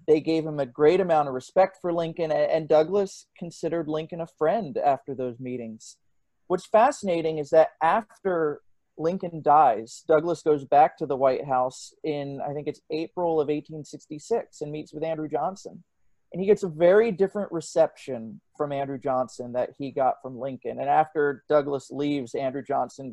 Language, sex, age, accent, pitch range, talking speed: English, male, 30-49, American, 135-160 Hz, 170 wpm